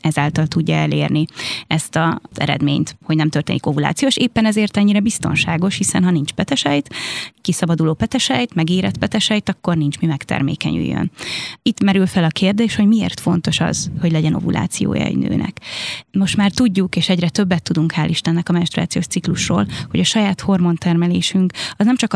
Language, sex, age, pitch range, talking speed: Hungarian, female, 20-39, 155-190 Hz, 160 wpm